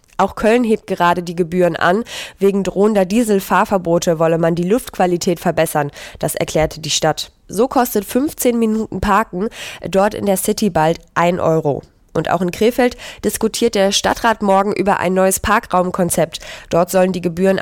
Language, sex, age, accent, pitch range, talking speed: German, female, 20-39, German, 170-210 Hz, 160 wpm